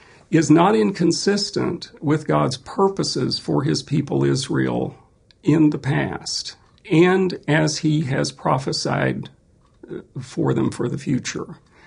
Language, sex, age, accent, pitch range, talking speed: English, male, 50-69, American, 120-180 Hz, 115 wpm